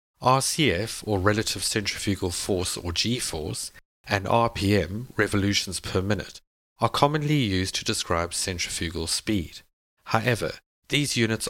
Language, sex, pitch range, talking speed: English, male, 90-115 Hz, 115 wpm